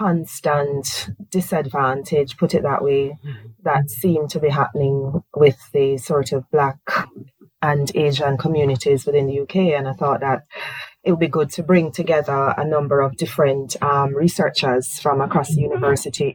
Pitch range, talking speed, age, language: 135-155 Hz, 160 wpm, 30-49, English